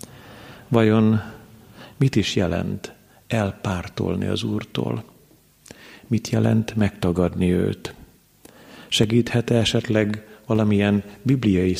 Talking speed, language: 75 wpm, Hungarian